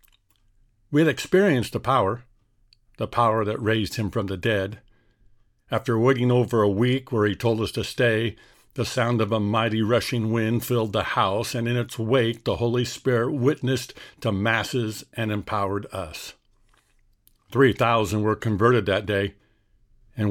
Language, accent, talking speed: English, American, 160 wpm